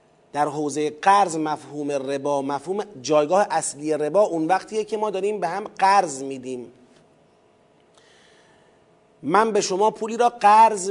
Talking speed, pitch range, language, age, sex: 130 wpm, 165-225 Hz, Persian, 40-59, male